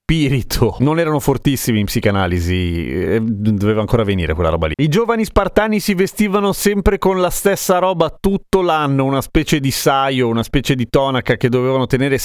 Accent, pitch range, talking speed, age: native, 115-155 Hz, 165 wpm, 30-49